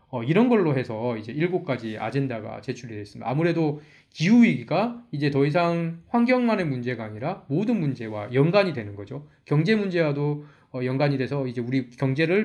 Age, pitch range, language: 20-39, 125-185 Hz, Korean